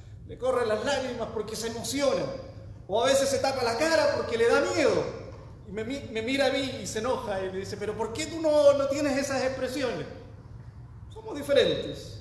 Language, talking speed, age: English, 200 wpm, 40-59